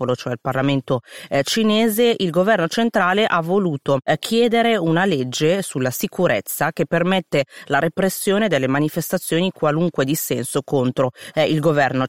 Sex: female